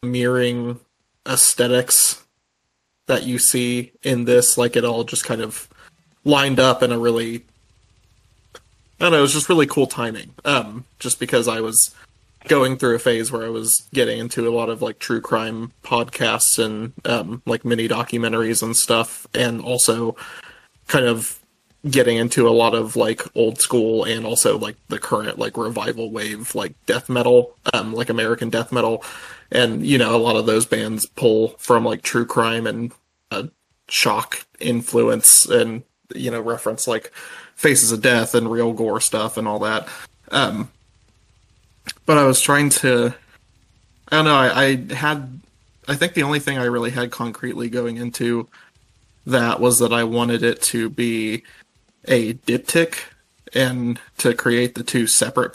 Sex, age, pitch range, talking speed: male, 20-39, 115-125 Hz, 165 wpm